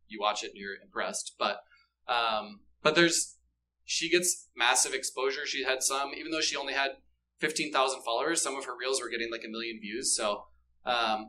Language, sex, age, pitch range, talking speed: English, male, 20-39, 110-155 Hz, 195 wpm